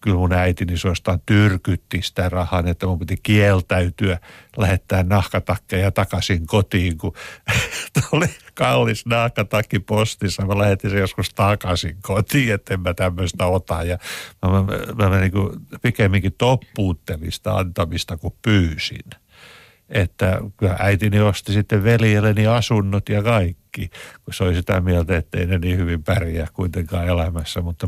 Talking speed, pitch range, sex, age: 125 wpm, 90-115 Hz, male, 60-79